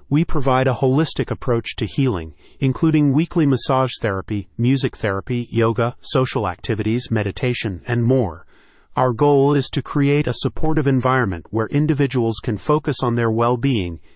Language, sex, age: English, male, 40-59